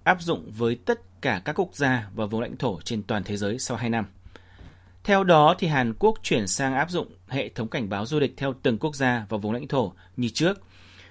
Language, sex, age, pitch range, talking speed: Vietnamese, male, 30-49, 105-150 Hz, 240 wpm